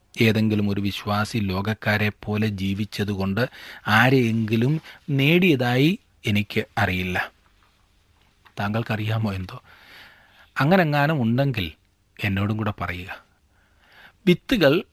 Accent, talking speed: native, 70 wpm